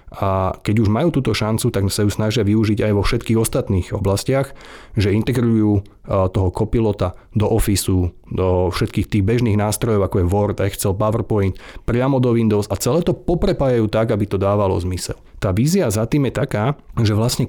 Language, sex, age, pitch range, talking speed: Slovak, male, 30-49, 100-125 Hz, 175 wpm